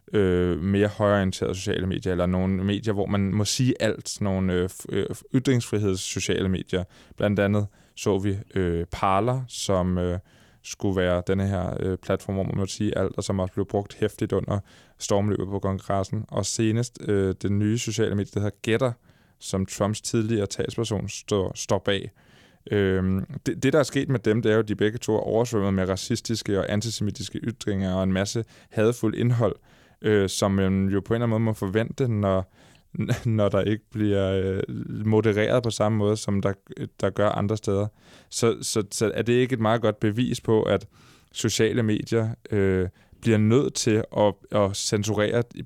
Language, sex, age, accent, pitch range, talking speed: Danish, male, 20-39, native, 100-115 Hz, 185 wpm